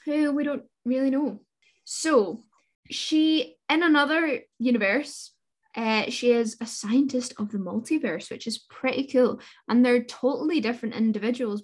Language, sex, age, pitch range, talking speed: English, female, 10-29, 210-265 Hz, 140 wpm